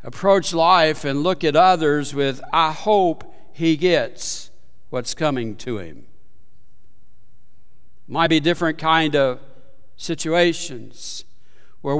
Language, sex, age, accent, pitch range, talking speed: English, male, 60-79, American, 115-165 Hz, 110 wpm